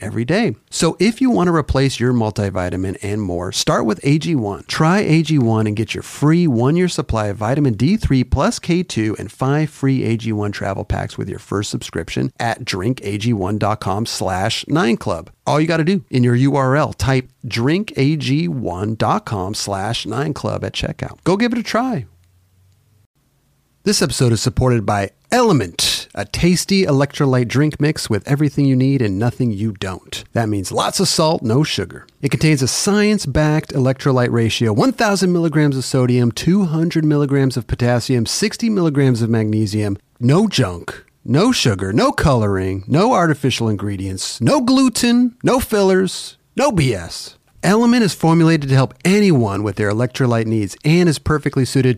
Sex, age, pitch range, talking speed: male, 40-59, 110-155 Hz, 150 wpm